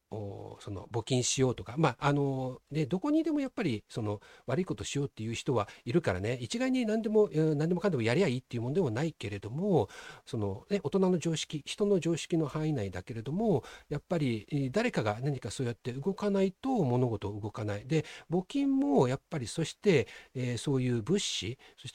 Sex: male